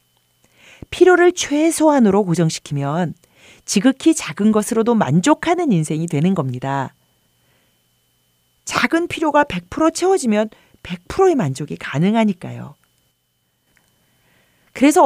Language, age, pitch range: Korean, 40-59, 155-245 Hz